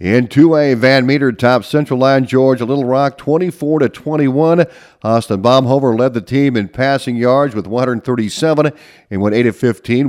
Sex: male